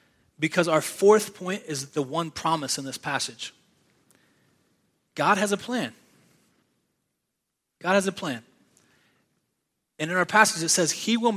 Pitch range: 150-190 Hz